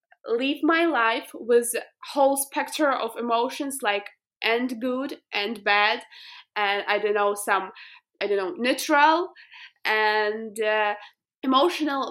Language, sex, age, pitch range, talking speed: English, female, 20-39, 225-285 Hz, 130 wpm